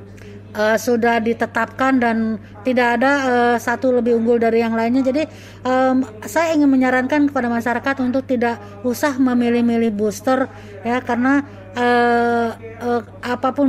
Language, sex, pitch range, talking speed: Indonesian, female, 235-275 Hz, 130 wpm